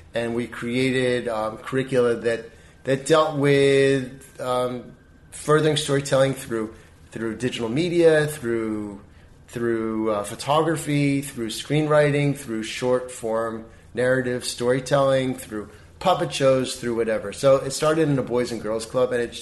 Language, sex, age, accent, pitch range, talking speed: English, male, 30-49, American, 115-135 Hz, 135 wpm